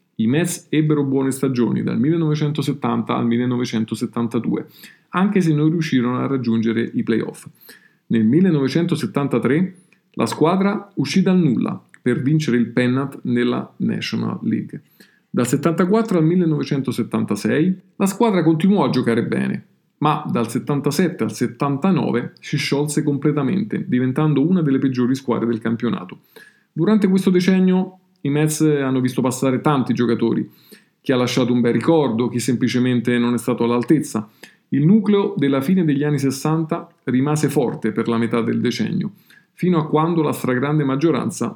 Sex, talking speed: male, 140 wpm